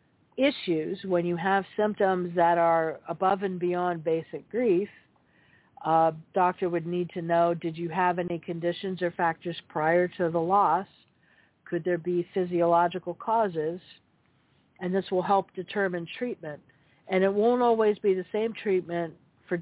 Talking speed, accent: 150 wpm, American